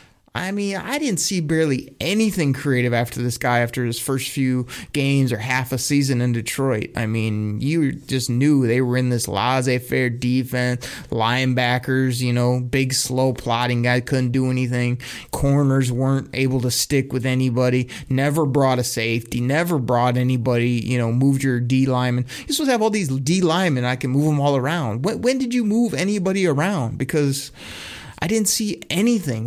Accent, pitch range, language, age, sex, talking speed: American, 125-145 Hz, English, 30-49, male, 180 wpm